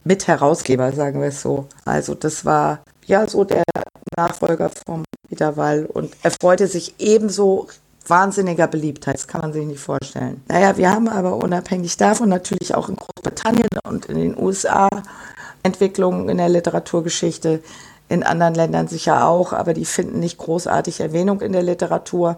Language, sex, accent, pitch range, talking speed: German, female, German, 145-190 Hz, 160 wpm